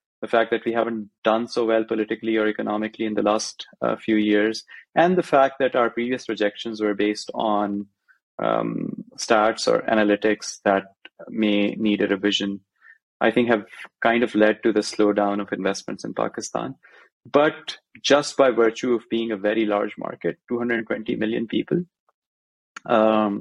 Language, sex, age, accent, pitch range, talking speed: English, male, 30-49, Indian, 105-115 Hz, 160 wpm